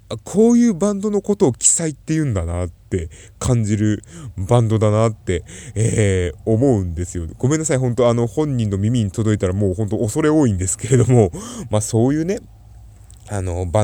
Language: Japanese